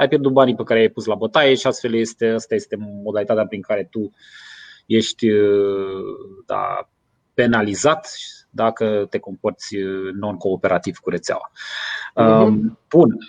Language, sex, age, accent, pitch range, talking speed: Romanian, male, 20-39, native, 105-135 Hz, 125 wpm